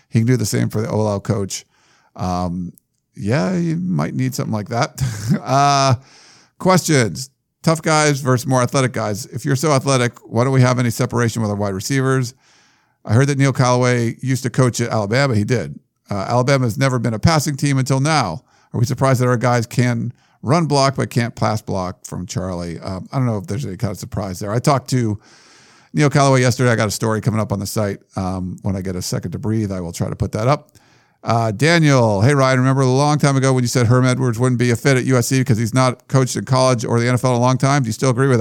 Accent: American